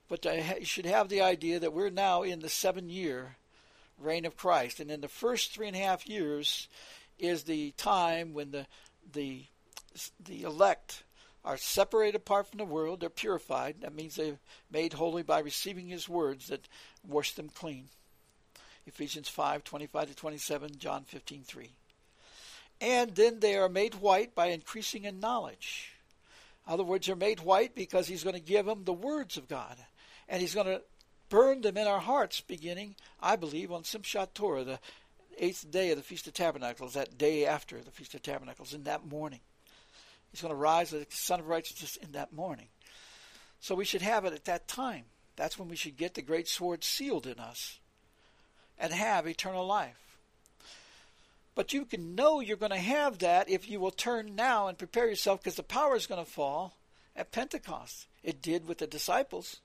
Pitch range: 155-205 Hz